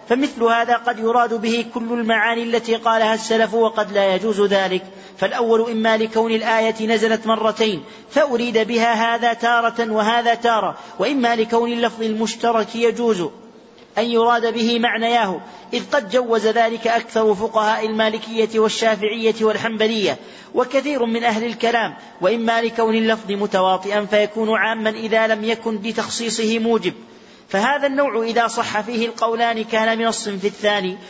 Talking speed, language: 135 wpm, Arabic